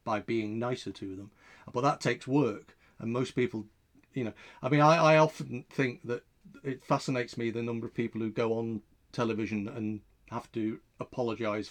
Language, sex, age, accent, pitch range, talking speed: English, male, 40-59, British, 115-135 Hz, 185 wpm